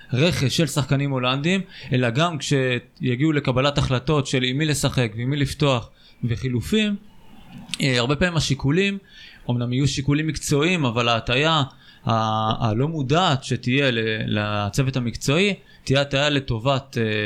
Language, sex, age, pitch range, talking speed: Hebrew, male, 20-39, 125-155 Hz, 130 wpm